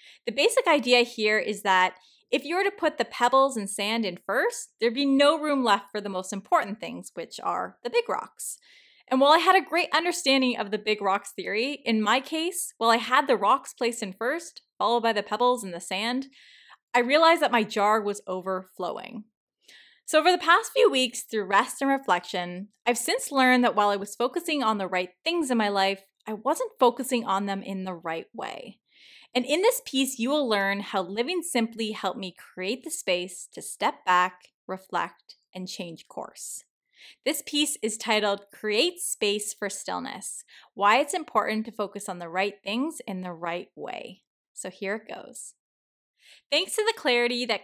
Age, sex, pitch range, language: 20-39, female, 200-275 Hz, English